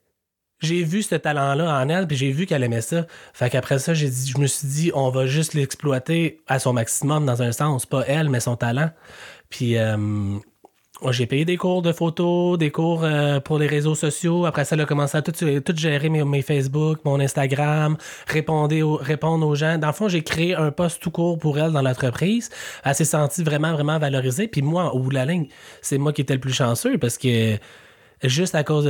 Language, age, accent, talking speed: French, 20-39, Canadian, 225 wpm